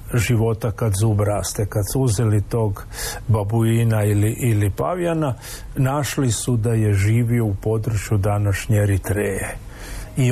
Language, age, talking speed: Croatian, 50-69, 130 wpm